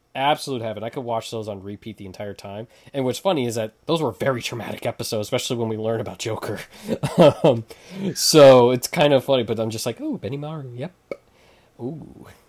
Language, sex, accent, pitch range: English, male, American, 105-130 Hz